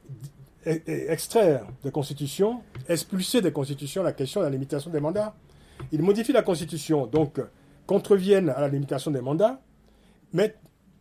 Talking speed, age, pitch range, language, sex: 135 wpm, 40-59, 135-180 Hz, French, male